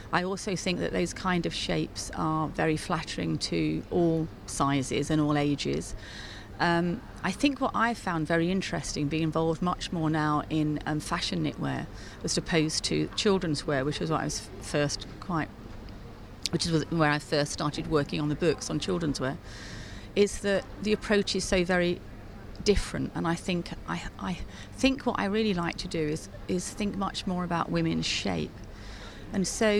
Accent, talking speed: British, 180 wpm